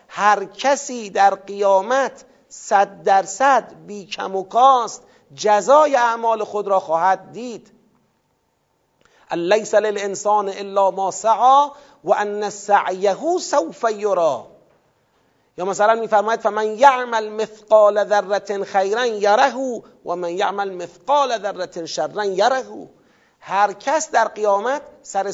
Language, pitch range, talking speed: Persian, 185-235 Hz, 105 wpm